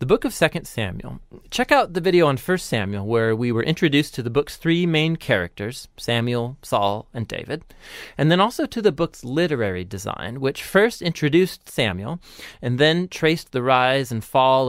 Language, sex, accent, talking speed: English, male, American, 185 wpm